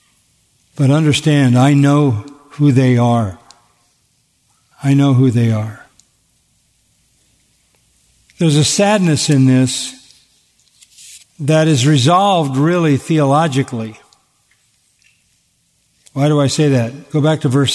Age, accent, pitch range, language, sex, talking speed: 50-69, American, 125-155 Hz, English, male, 105 wpm